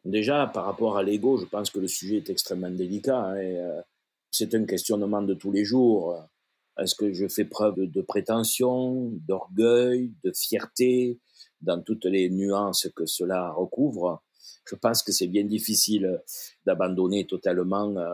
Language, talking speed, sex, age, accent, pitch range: French, 155 wpm, male, 50-69, French, 95-115 Hz